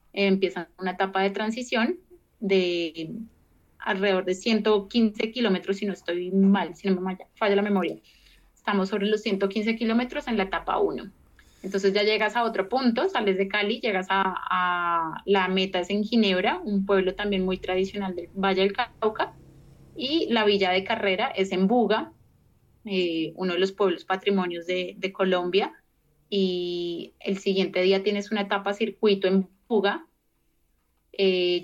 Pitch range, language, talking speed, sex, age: 190-220 Hz, Spanish, 160 wpm, female, 30-49